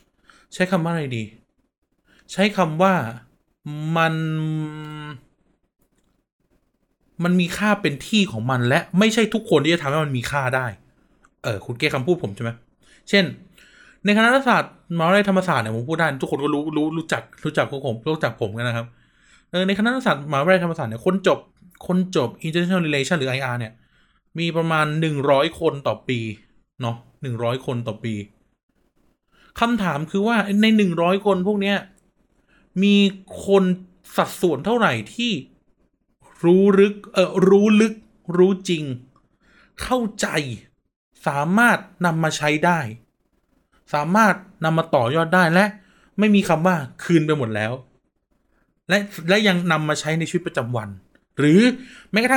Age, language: 20-39, Thai